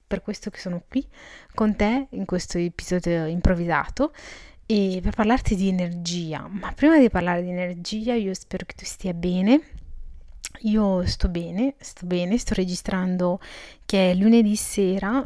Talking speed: 155 wpm